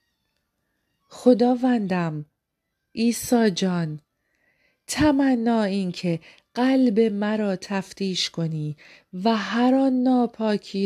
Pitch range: 175-235 Hz